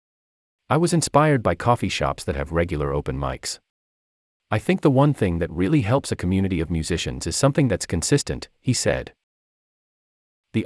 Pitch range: 80-115 Hz